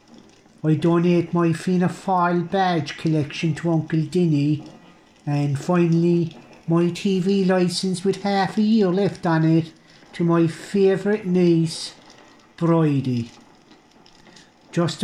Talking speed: 110 wpm